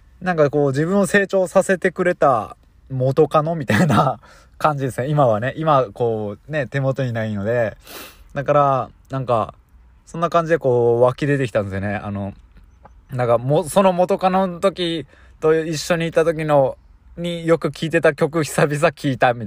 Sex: male